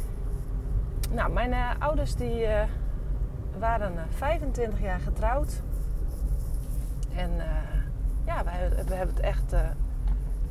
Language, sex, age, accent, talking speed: Dutch, female, 30-49, Dutch, 115 wpm